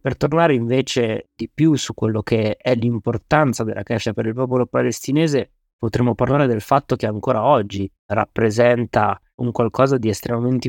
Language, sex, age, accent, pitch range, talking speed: Italian, male, 30-49, native, 110-130 Hz, 155 wpm